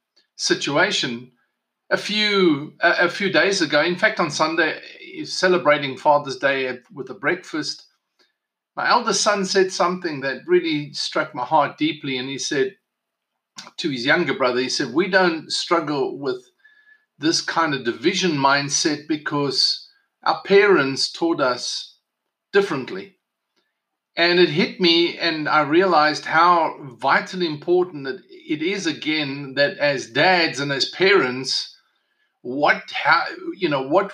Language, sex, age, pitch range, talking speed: English, male, 50-69, 145-195 Hz, 135 wpm